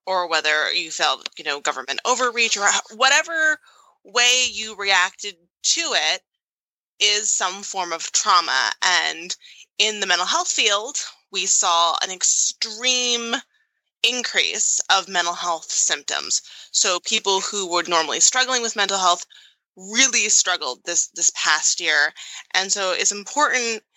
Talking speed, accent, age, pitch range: 135 wpm, American, 20-39, 180-225 Hz